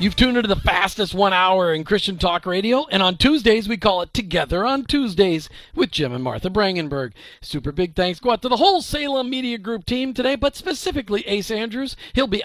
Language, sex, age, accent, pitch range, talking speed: English, male, 40-59, American, 180-240 Hz, 210 wpm